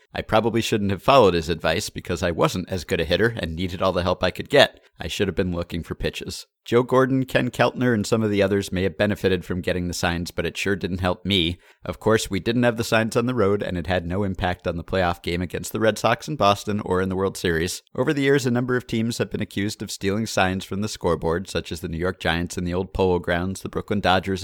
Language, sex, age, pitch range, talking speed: English, male, 50-69, 85-110 Hz, 275 wpm